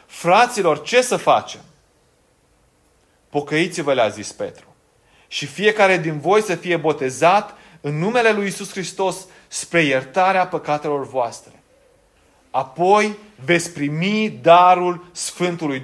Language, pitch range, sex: Romanian, 130-175 Hz, male